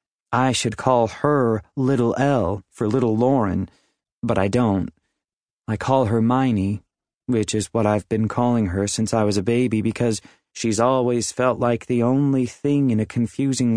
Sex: male